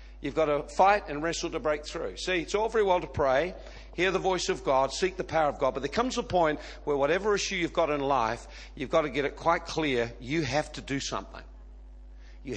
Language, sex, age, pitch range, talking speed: English, male, 50-69, 125-170 Hz, 245 wpm